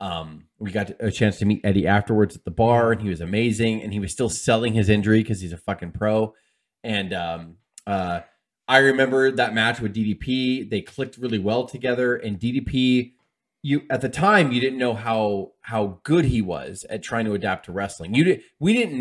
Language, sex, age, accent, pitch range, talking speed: English, male, 20-39, American, 95-125 Hz, 210 wpm